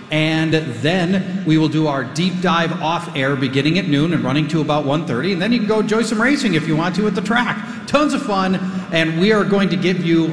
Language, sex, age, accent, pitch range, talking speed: English, male, 40-59, American, 150-200 Hz, 250 wpm